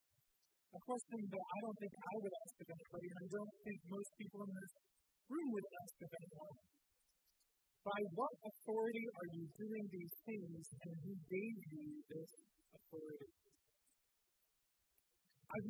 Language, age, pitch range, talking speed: English, 50-69, 175-215 Hz, 150 wpm